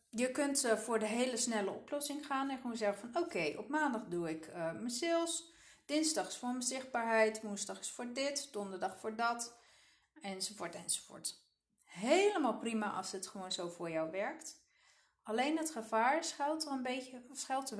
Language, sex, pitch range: Dutch, female, 200-260 Hz